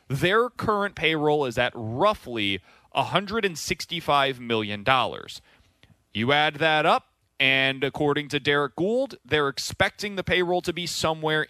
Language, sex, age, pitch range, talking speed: English, male, 30-49, 125-180 Hz, 125 wpm